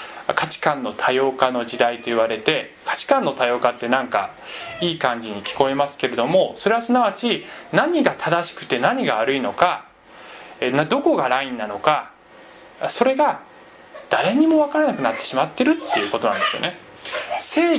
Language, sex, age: Japanese, male, 20-39